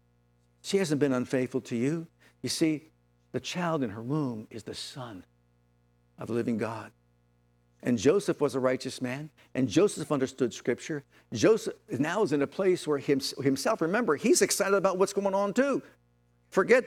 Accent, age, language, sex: American, 50-69, English, male